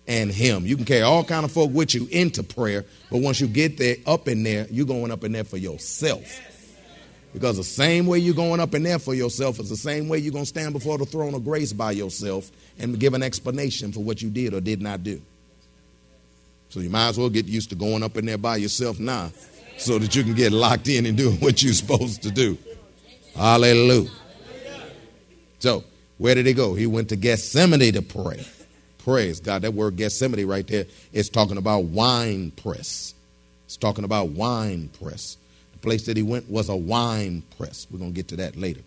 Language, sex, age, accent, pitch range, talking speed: English, male, 40-59, American, 90-125 Hz, 215 wpm